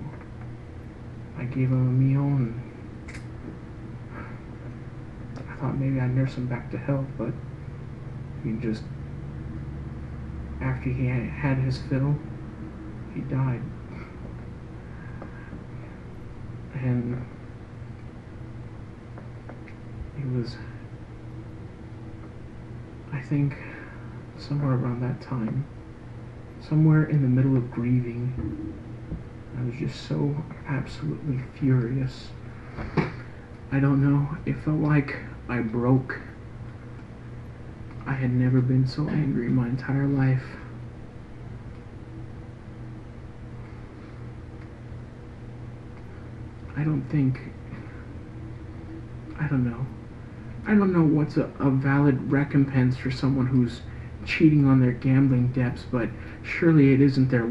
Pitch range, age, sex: 115-130 Hz, 40-59, male